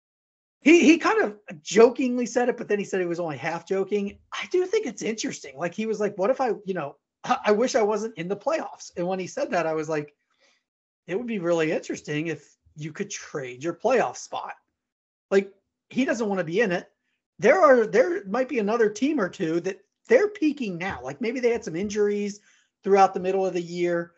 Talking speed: 225 wpm